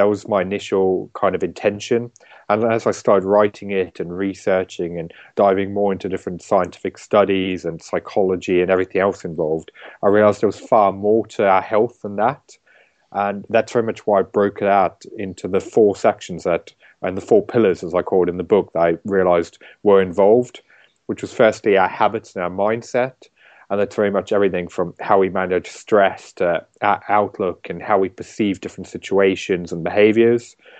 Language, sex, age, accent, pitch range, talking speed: English, male, 30-49, British, 95-105 Hz, 190 wpm